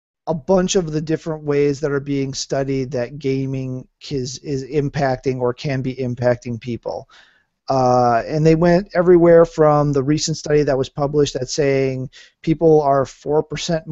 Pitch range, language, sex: 135-160 Hz, English, male